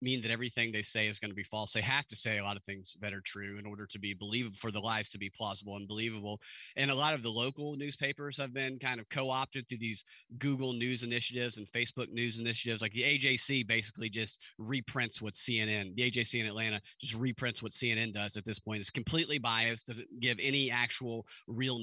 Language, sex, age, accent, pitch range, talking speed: English, male, 30-49, American, 110-145 Hz, 230 wpm